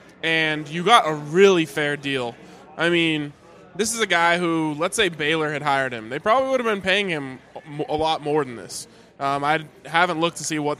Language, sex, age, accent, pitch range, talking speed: English, male, 20-39, American, 150-185 Hz, 215 wpm